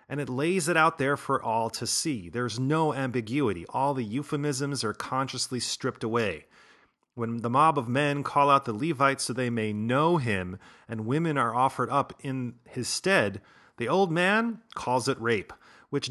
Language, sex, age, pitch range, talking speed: English, male, 30-49, 115-145 Hz, 185 wpm